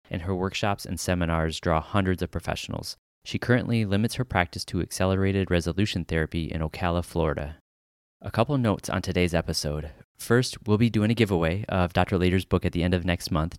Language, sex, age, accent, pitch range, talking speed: English, male, 30-49, American, 80-95 Hz, 190 wpm